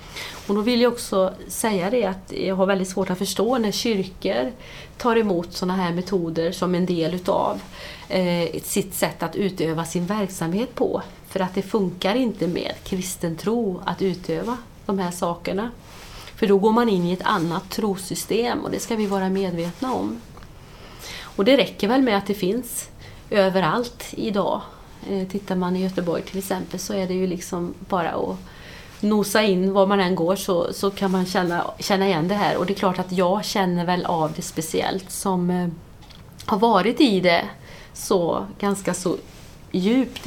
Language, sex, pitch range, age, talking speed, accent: Swedish, female, 180-200 Hz, 30-49, 180 wpm, native